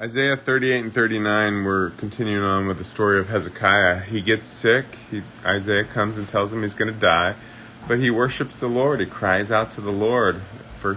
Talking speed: 190 wpm